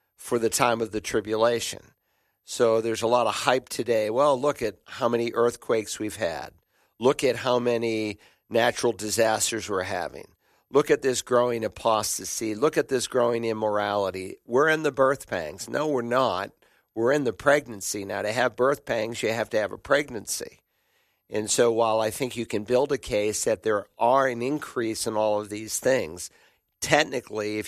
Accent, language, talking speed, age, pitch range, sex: American, English, 180 wpm, 50-69, 110-125 Hz, male